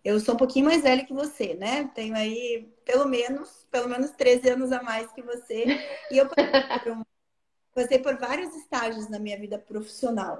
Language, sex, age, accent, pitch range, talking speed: Portuguese, female, 20-39, Brazilian, 210-265 Hz, 195 wpm